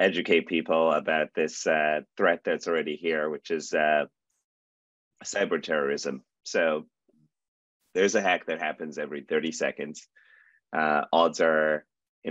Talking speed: 130 wpm